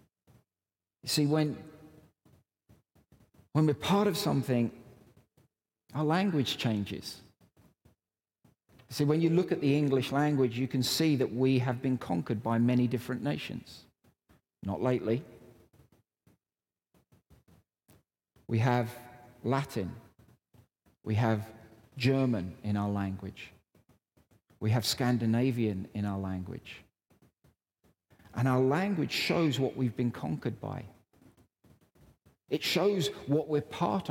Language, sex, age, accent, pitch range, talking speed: English, male, 50-69, British, 115-145 Hz, 110 wpm